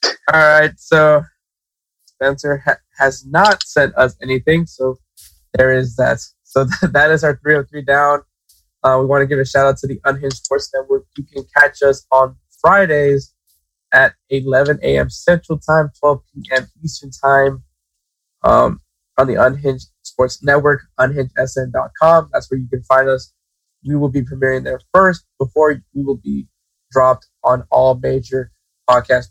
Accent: American